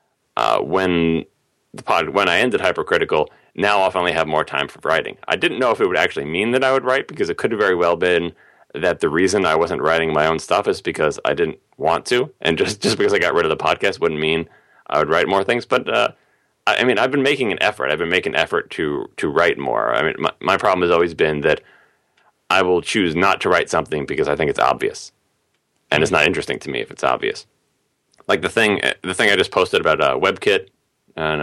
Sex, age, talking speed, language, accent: male, 30-49, 245 wpm, English, American